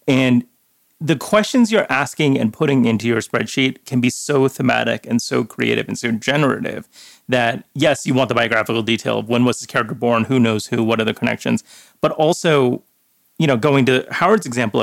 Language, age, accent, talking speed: English, 30-49, American, 195 wpm